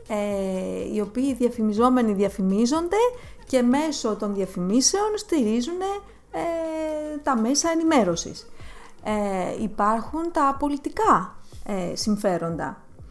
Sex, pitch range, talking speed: female, 200-285 Hz, 90 wpm